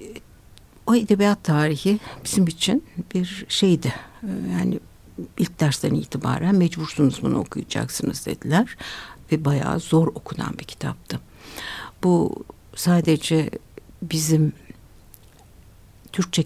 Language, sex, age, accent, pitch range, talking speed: Turkish, female, 60-79, native, 130-175 Hz, 95 wpm